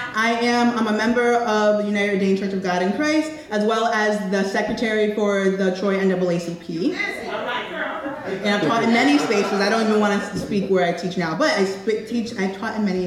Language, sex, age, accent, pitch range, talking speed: English, female, 30-49, American, 160-195 Hz, 210 wpm